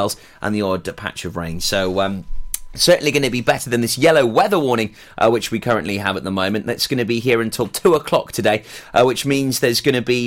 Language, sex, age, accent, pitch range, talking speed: English, male, 30-49, British, 100-125 Hz, 245 wpm